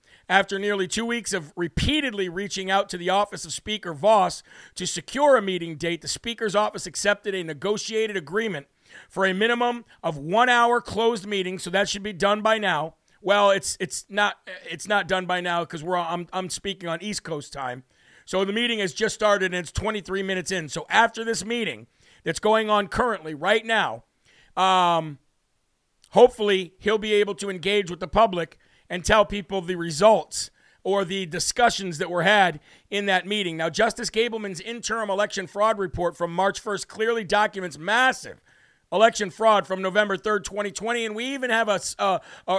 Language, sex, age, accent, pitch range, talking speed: English, male, 50-69, American, 180-220 Hz, 180 wpm